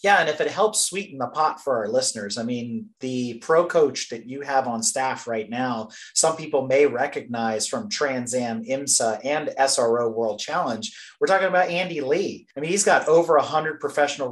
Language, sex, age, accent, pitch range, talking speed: English, male, 30-49, American, 125-170 Hz, 200 wpm